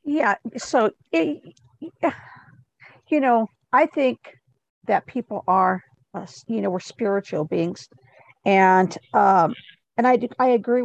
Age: 50-69